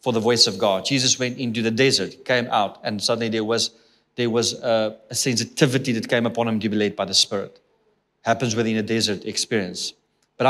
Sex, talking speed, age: male, 210 wpm, 30-49